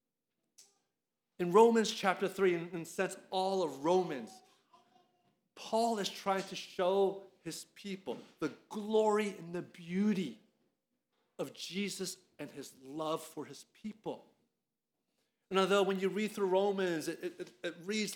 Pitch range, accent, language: 170-200 Hz, American, English